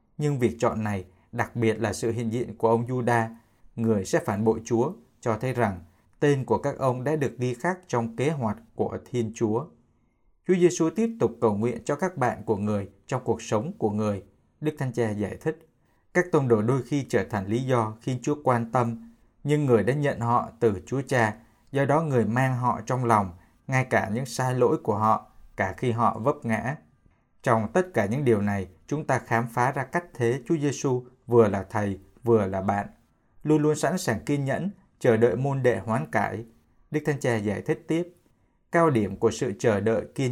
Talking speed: 210 wpm